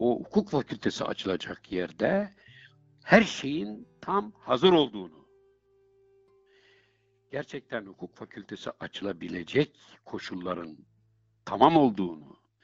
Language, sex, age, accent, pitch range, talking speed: Turkish, male, 60-79, native, 105-155 Hz, 80 wpm